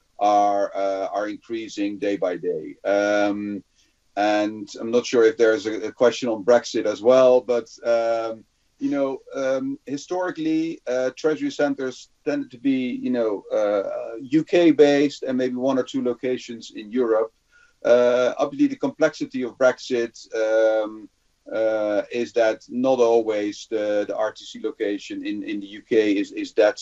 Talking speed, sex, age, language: 155 wpm, male, 40-59, English